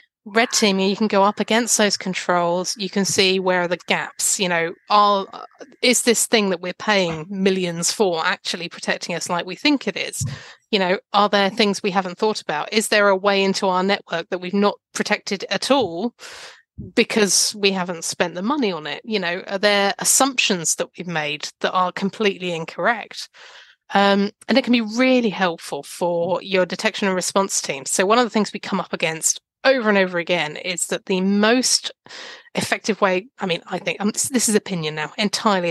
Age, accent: 30-49, British